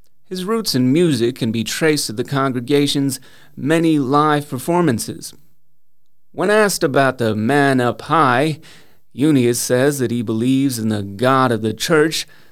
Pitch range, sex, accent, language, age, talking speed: 120-155 Hz, male, American, English, 30-49, 150 wpm